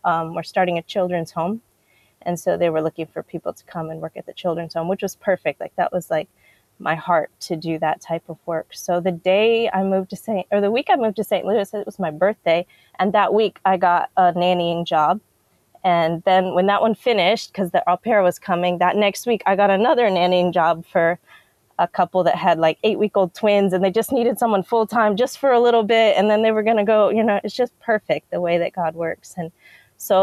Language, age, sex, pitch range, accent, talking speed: English, 20-39, female, 175-215 Hz, American, 245 wpm